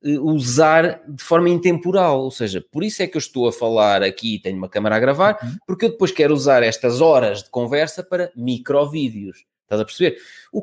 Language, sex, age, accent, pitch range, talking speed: Portuguese, male, 20-39, Portuguese, 140-205 Hz, 205 wpm